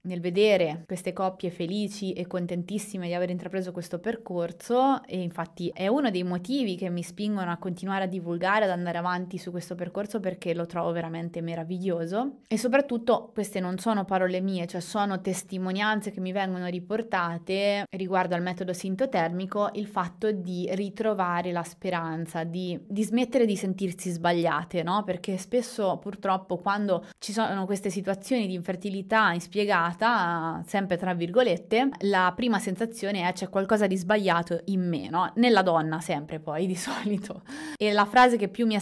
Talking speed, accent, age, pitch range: 160 wpm, native, 20-39, 175-200 Hz